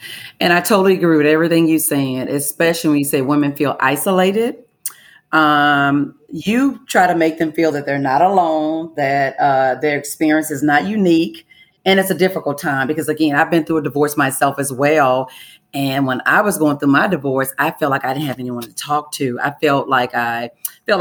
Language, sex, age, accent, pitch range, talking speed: English, female, 40-59, American, 135-160 Hz, 205 wpm